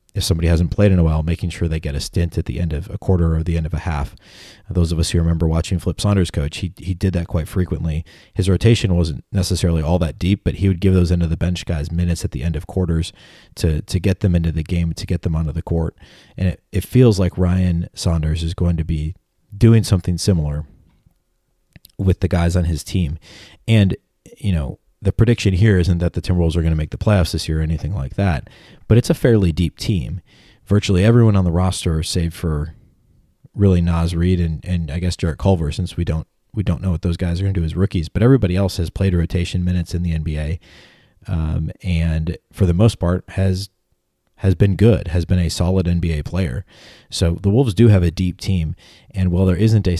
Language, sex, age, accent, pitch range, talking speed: English, male, 30-49, American, 85-95 Hz, 235 wpm